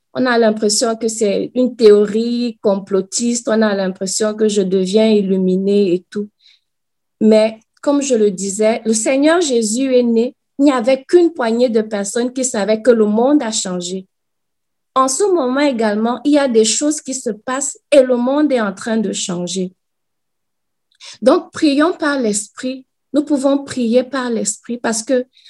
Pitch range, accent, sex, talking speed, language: 215-270 Hz, Canadian, female, 170 wpm, French